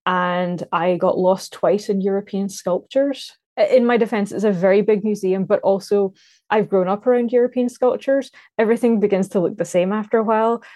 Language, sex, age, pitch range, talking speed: English, female, 20-39, 175-225 Hz, 185 wpm